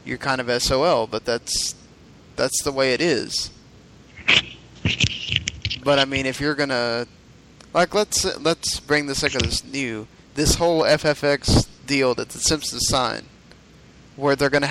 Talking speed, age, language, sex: 150 wpm, 10-29, English, male